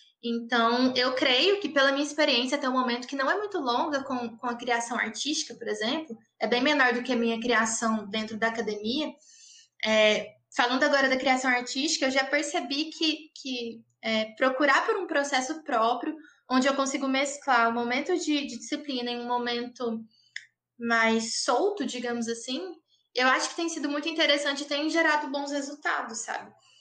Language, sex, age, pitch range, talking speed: Portuguese, female, 20-39, 235-295 Hz, 170 wpm